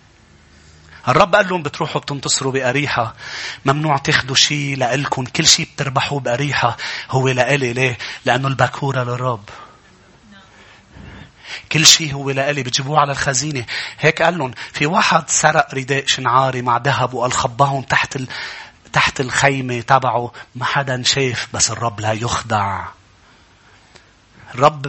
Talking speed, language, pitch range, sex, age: 125 wpm, English, 120-145 Hz, male, 30-49